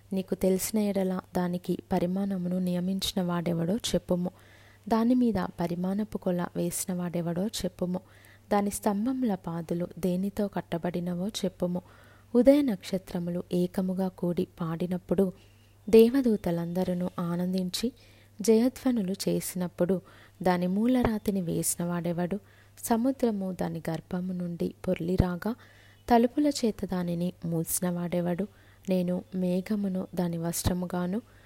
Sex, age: female, 20-39